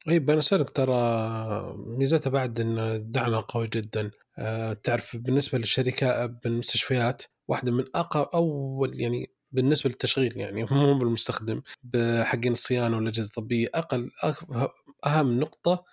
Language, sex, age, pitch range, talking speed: Arabic, male, 30-49, 120-150 Hz, 115 wpm